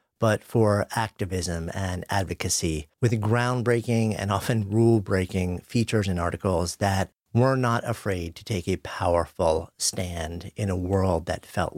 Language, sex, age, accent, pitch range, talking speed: English, male, 50-69, American, 95-115 Hz, 140 wpm